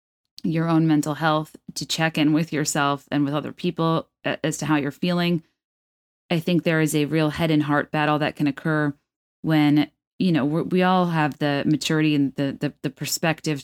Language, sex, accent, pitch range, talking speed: English, female, American, 145-165 Hz, 200 wpm